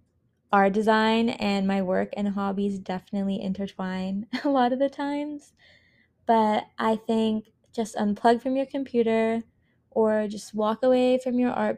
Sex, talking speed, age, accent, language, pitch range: female, 150 wpm, 20-39, American, English, 195-220 Hz